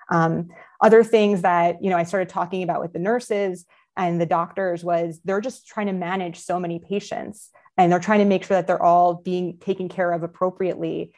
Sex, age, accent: female, 20-39, American